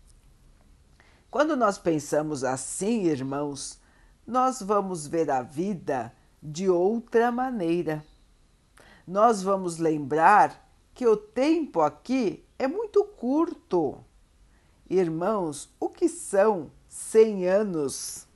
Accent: Brazilian